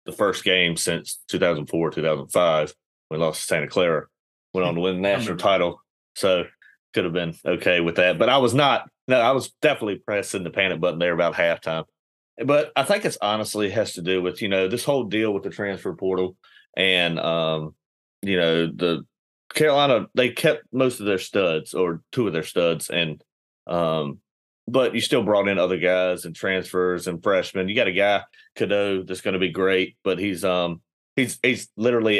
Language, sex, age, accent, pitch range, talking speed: English, male, 30-49, American, 85-100 Hz, 195 wpm